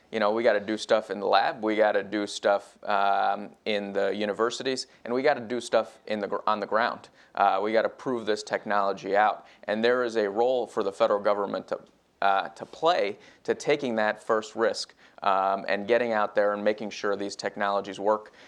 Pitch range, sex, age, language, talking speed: 100-120 Hz, male, 30-49, English, 220 wpm